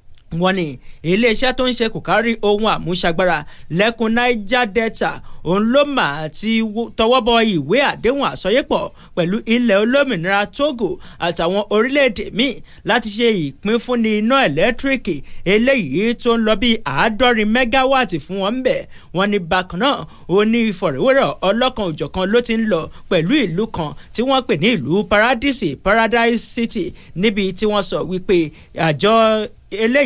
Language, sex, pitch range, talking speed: English, male, 185-235 Hz, 160 wpm